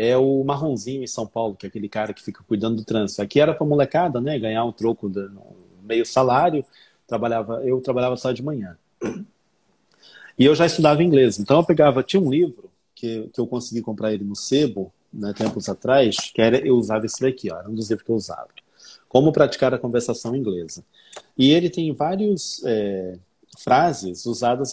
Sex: male